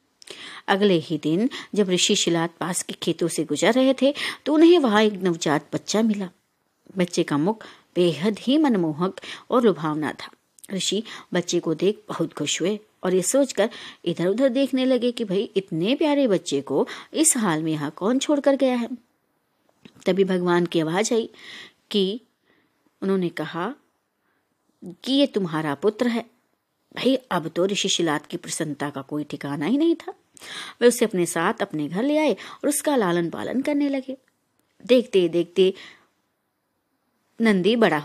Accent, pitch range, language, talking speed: native, 170-255 Hz, Hindi, 160 wpm